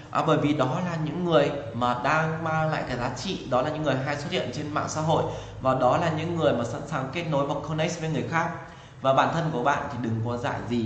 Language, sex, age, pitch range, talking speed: Vietnamese, male, 20-39, 125-160 Hz, 275 wpm